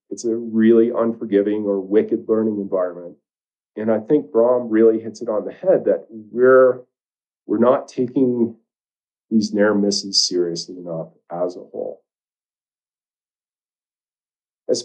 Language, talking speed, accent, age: English, 130 wpm, American, 40-59